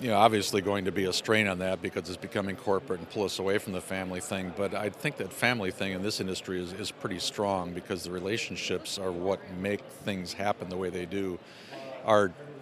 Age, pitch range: 50-69, 90-100 Hz